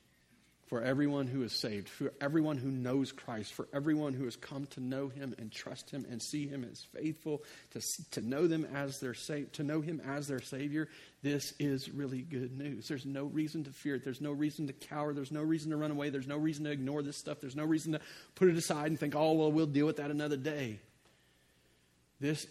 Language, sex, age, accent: English, male, 50-69, American